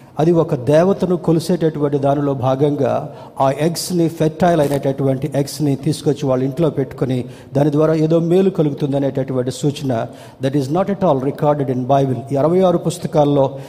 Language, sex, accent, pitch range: Telugu, male, native, 130-155 Hz